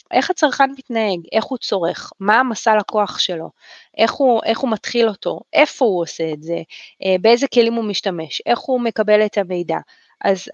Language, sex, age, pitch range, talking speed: Hebrew, female, 20-39, 190-235 Hz, 180 wpm